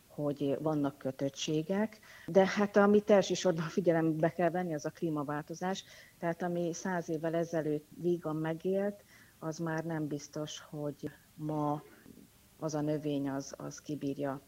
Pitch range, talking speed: 145-175 Hz, 135 wpm